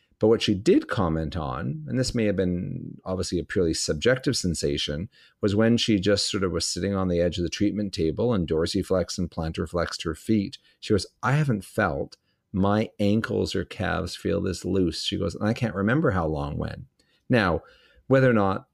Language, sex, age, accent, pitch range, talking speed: English, male, 40-59, American, 85-105 Hz, 200 wpm